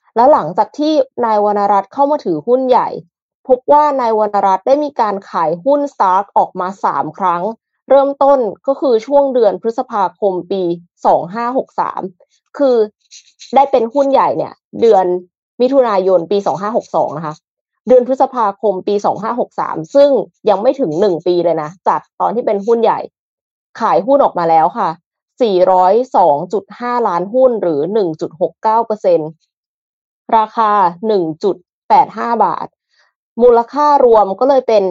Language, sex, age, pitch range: Thai, female, 20-39, 185-250 Hz